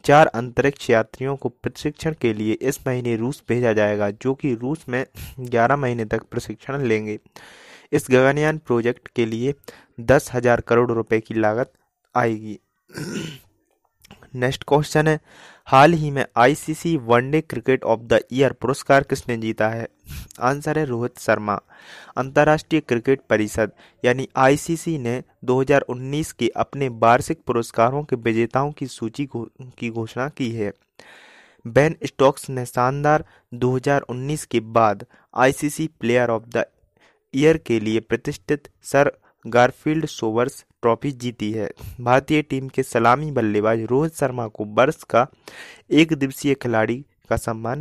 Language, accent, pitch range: Hindi, native, 115-145 Hz